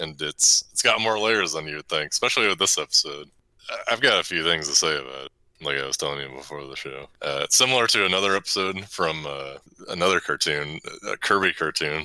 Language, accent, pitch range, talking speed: English, American, 75-90 Hz, 220 wpm